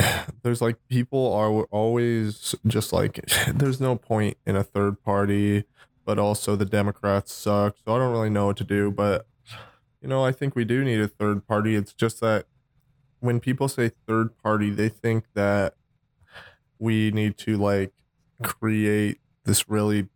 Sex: male